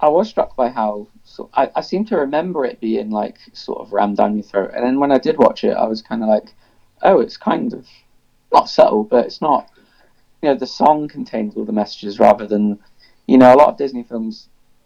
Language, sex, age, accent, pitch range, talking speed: English, male, 20-39, British, 105-125 Hz, 235 wpm